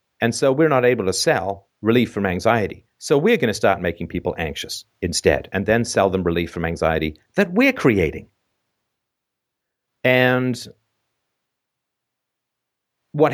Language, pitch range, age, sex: English, 110-160 Hz, 50-69, male